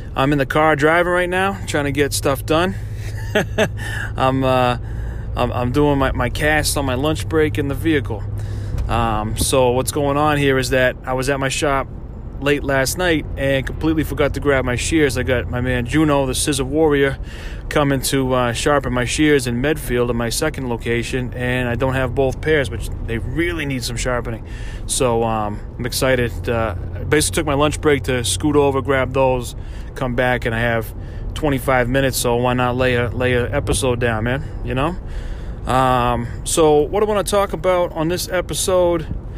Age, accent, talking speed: 30-49, American, 195 wpm